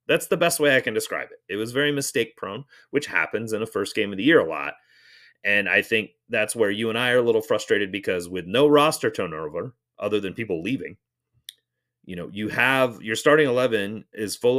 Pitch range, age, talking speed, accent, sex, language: 95-130 Hz, 30-49, 220 wpm, American, male, English